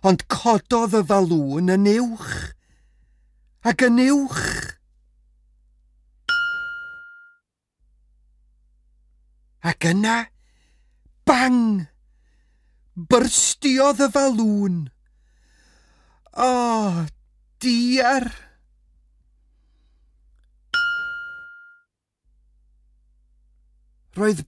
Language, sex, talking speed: English, male, 45 wpm